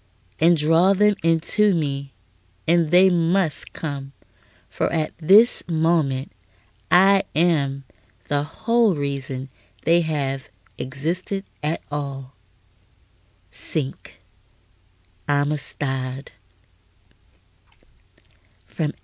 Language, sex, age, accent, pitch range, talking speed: English, female, 30-49, American, 100-160 Hz, 80 wpm